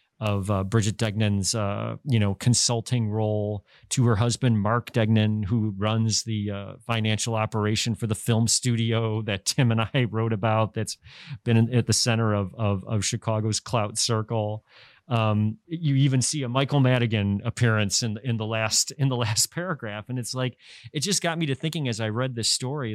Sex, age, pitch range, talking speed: male, 40-59, 110-130 Hz, 190 wpm